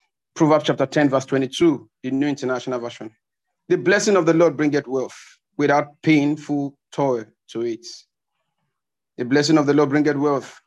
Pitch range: 135-190 Hz